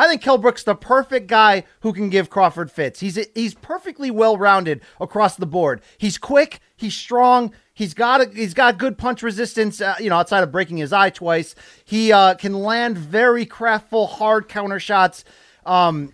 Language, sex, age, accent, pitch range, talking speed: English, male, 30-49, American, 190-245 Hz, 185 wpm